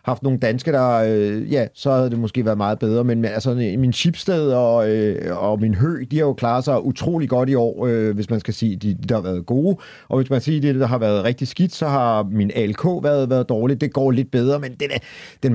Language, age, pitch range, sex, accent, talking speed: Danish, 40-59, 115-135 Hz, male, native, 260 wpm